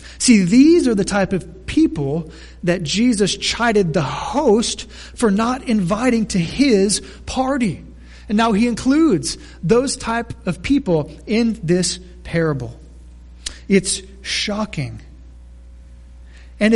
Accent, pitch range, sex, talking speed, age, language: American, 145-220 Hz, male, 115 wpm, 30-49, English